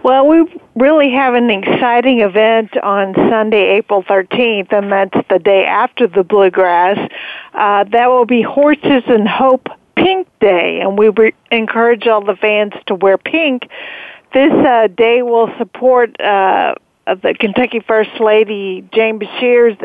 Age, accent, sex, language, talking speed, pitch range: 50-69, American, female, English, 150 wpm, 200-245 Hz